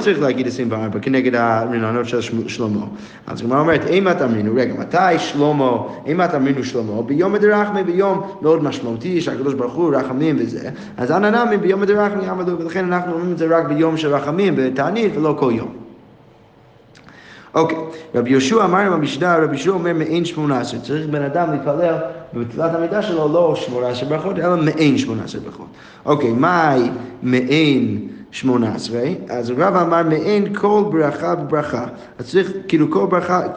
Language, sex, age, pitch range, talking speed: Hebrew, male, 30-49, 125-170 Hz, 100 wpm